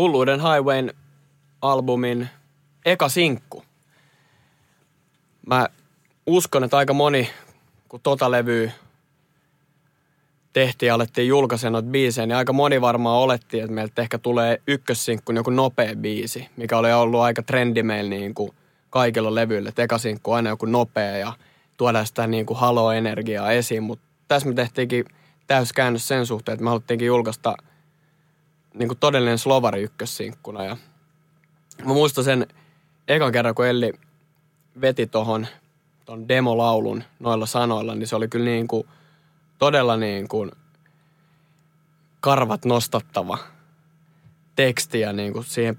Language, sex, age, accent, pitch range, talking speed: Finnish, male, 20-39, native, 115-150 Hz, 125 wpm